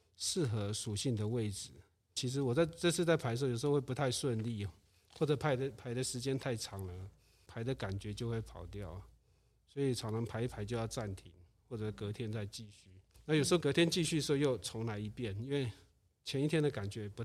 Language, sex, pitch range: Chinese, male, 105-145 Hz